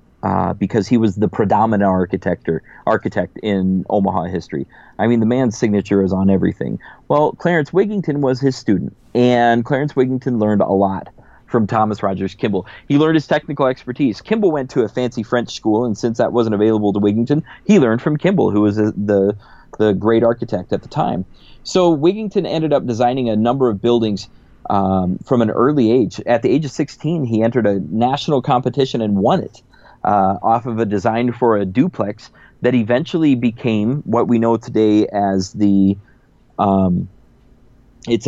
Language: English